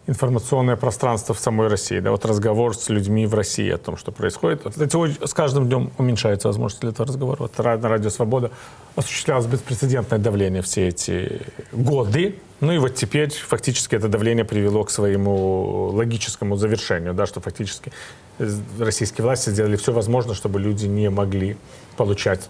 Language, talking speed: Russian, 150 wpm